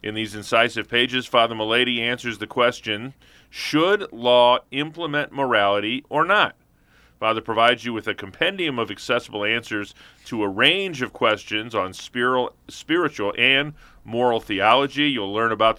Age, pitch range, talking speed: 40-59, 105-140 Hz, 140 wpm